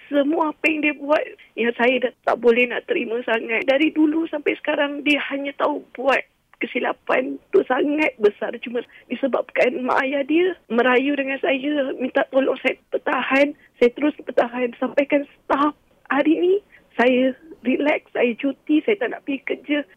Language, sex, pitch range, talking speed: Malay, female, 270-365 Hz, 160 wpm